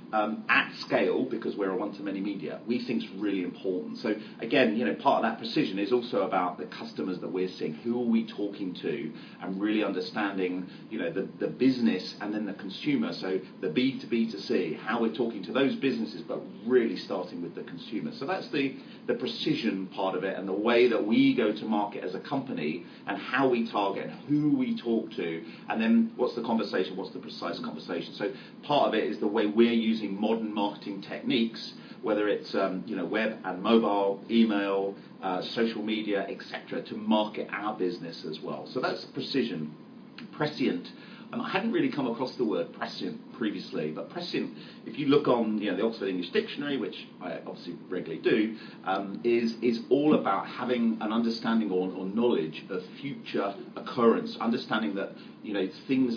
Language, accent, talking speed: English, British, 195 wpm